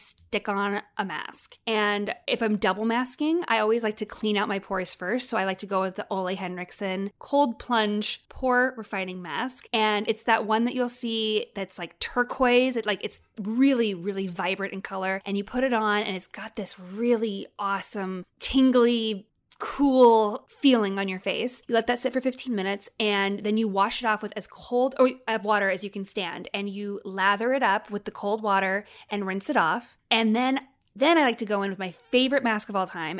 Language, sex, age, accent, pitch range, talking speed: English, female, 20-39, American, 200-240 Hz, 210 wpm